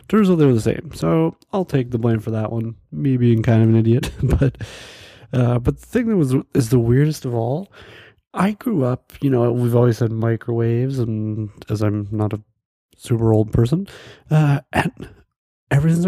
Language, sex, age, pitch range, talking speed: English, male, 30-49, 115-150 Hz, 195 wpm